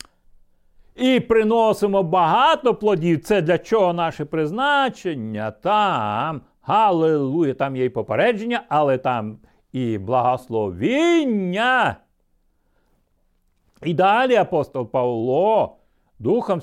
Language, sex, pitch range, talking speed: Ukrainian, male, 125-195 Hz, 85 wpm